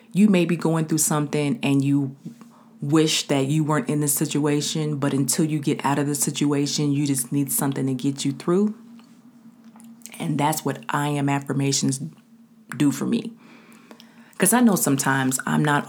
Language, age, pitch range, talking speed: English, 30-49, 140-225 Hz, 175 wpm